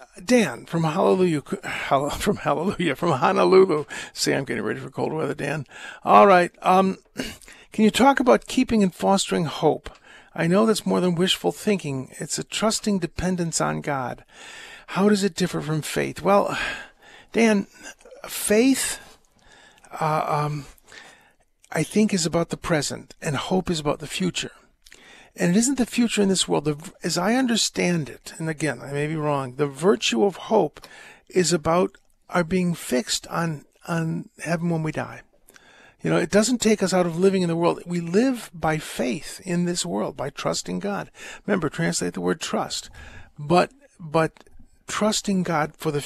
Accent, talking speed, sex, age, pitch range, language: American, 165 wpm, male, 50-69, 155-205 Hz, English